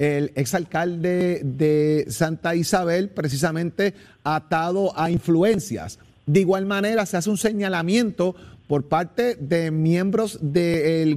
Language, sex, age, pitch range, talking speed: Spanish, male, 40-59, 160-210 Hz, 115 wpm